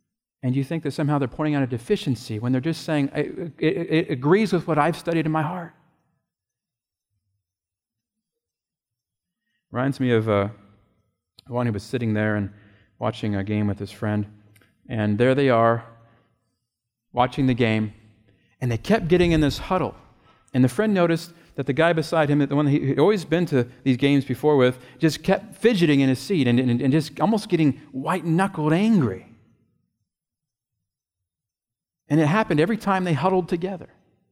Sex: male